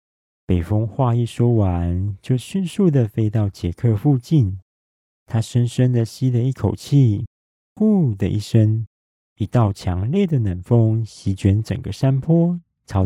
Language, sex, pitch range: Chinese, male, 95-130 Hz